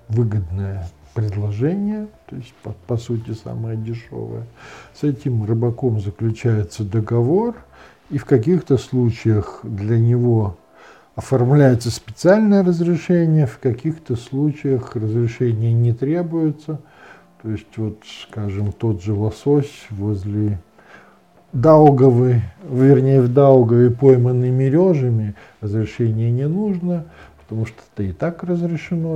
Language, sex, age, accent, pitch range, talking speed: Russian, male, 50-69, native, 110-150 Hz, 105 wpm